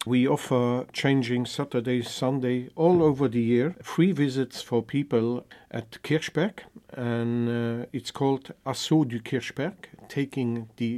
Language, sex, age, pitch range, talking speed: English, male, 50-69, 120-140 Hz, 130 wpm